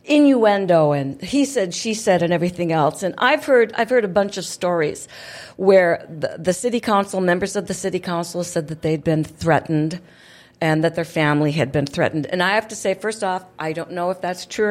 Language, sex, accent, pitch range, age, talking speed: English, female, American, 170-205 Hz, 50-69, 215 wpm